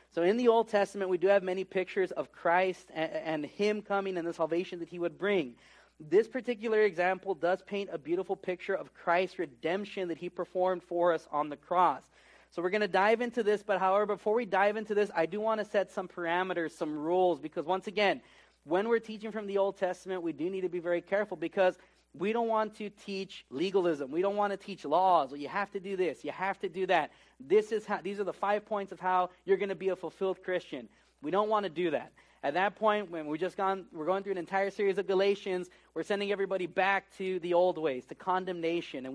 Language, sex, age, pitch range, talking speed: English, male, 30-49, 175-200 Hz, 240 wpm